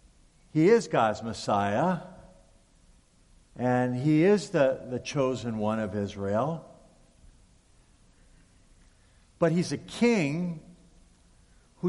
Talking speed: 90 wpm